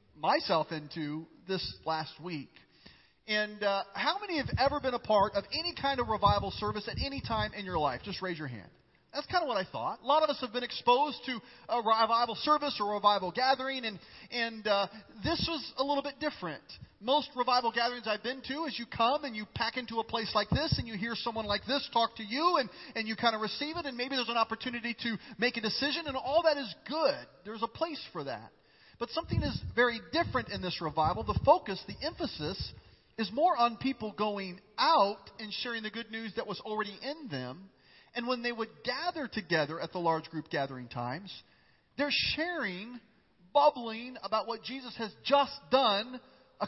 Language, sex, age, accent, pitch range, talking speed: English, male, 40-59, American, 200-265 Hz, 210 wpm